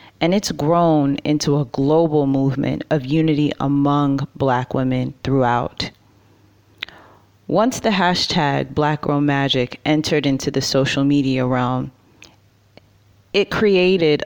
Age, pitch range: 30-49, 130-160 Hz